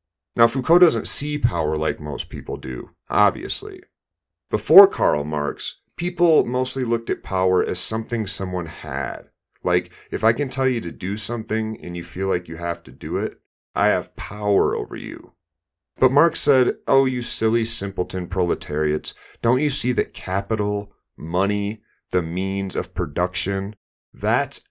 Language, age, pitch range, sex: English, 30-49, 90-115 Hz, male